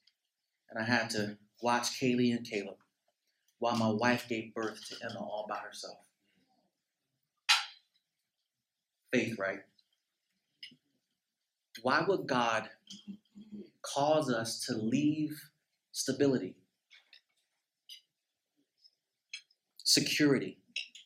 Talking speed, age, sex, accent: 85 wpm, 30-49, male, American